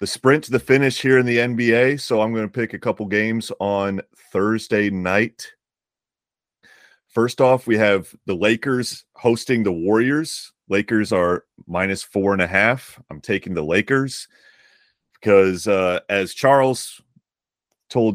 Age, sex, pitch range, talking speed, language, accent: 30-49, male, 90-120 Hz, 150 wpm, English, American